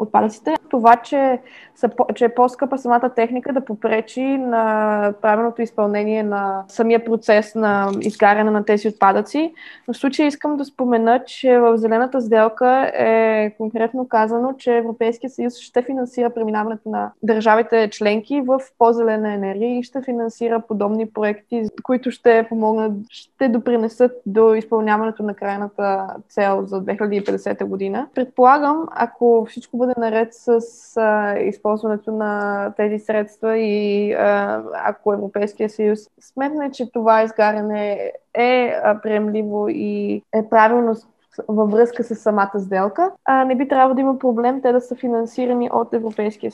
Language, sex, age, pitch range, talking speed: Bulgarian, female, 20-39, 210-245 Hz, 140 wpm